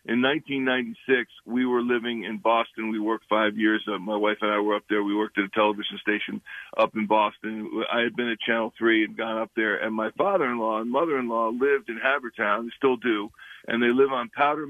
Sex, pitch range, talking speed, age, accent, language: male, 115-150 Hz, 220 wpm, 50-69, American, English